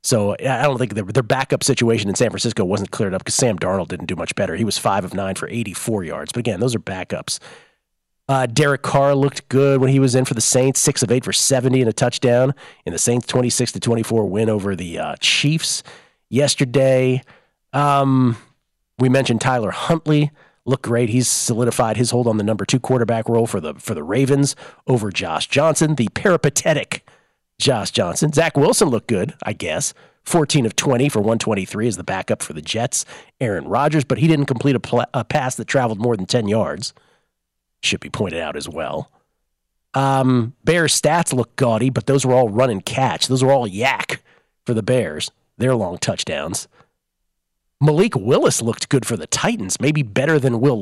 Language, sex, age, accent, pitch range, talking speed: English, male, 40-59, American, 110-135 Hz, 200 wpm